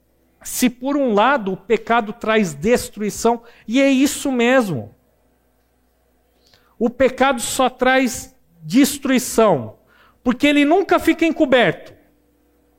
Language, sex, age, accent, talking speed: Portuguese, male, 50-69, Brazilian, 105 wpm